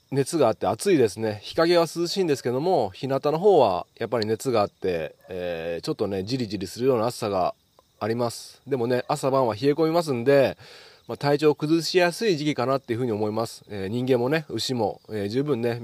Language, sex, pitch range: Japanese, male, 105-135 Hz